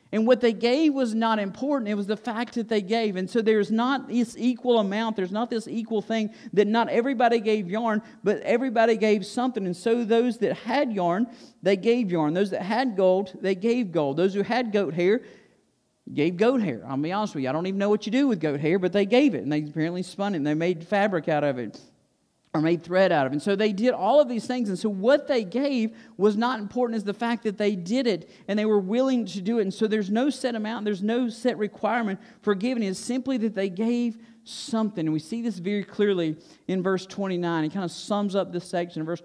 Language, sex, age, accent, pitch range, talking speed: English, male, 50-69, American, 180-230 Hz, 245 wpm